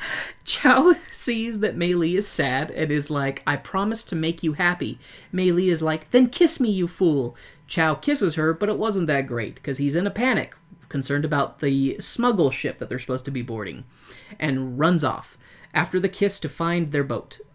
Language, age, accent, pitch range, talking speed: English, 30-49, American, 135-180 Hz, 200 wpm